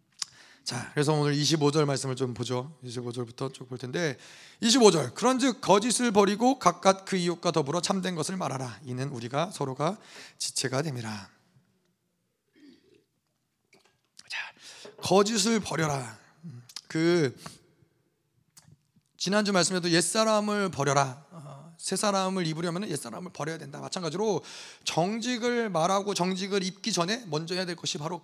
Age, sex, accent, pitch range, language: 30-49, male, native, 150-215 Hz, Korean